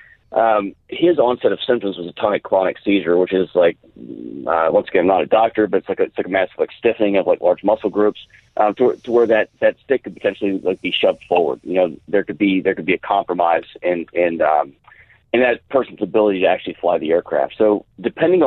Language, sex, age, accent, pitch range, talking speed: English, male, 30-49, American, 95-120 Hz, 240 wpm